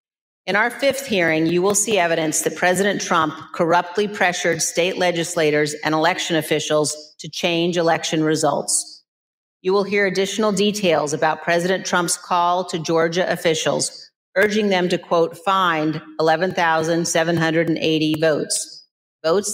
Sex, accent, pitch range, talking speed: female, American, 160-195 Hz, 130 wpm